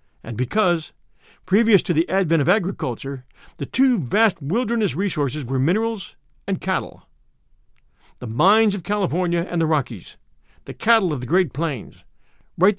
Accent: American